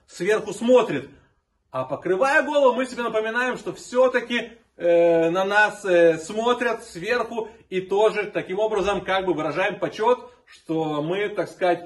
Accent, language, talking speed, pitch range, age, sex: native, Russian, 130 wpm, 175-235 Hz, 30-49, male